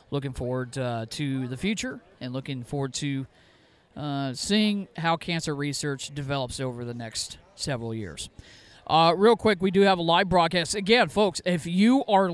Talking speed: 170 wpm